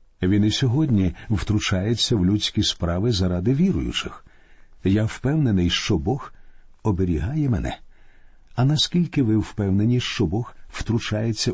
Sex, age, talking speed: male, 50-69, 115 wpm